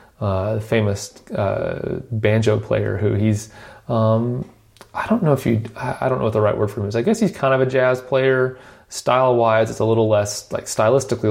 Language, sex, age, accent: English, male, 30-49, American